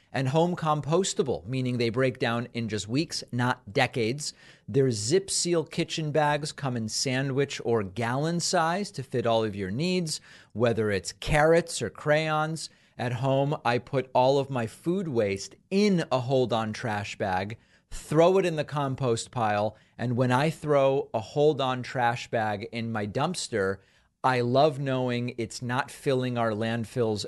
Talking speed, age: 165 wpm, 40-59